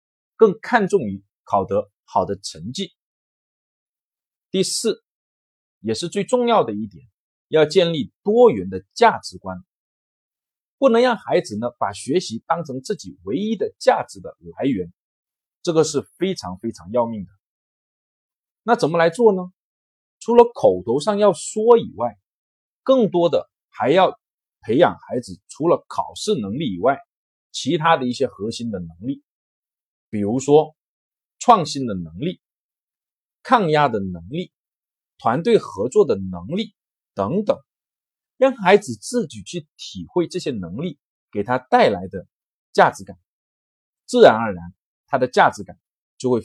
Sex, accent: male, native